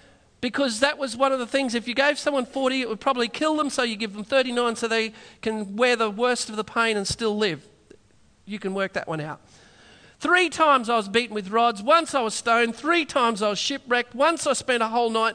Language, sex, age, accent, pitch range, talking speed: English, male, 40-59, Australian, 215-285 Hz, 240 wpm